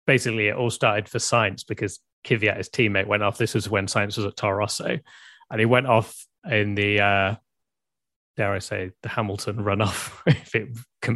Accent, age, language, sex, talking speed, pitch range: British, 30-49, English, male, 190 wpm, 100-110 Hz